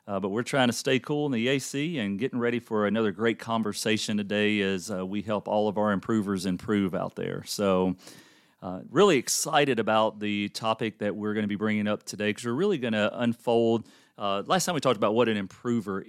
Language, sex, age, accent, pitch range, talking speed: English, male, 40-59, American, 100-115 Hz, 215 wpm